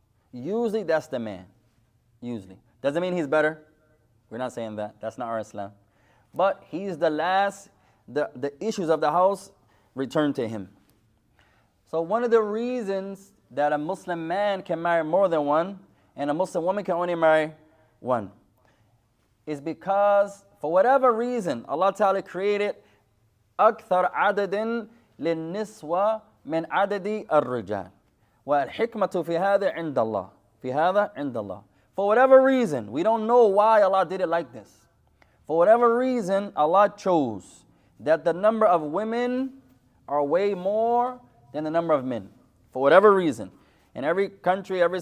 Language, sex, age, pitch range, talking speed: English, male, 20-39, 125-200 Hz, 145 wpm